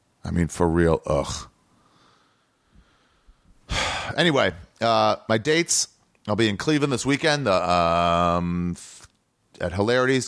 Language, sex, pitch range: English, male, 85-125 Hz